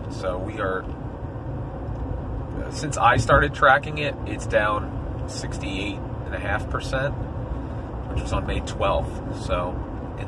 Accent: American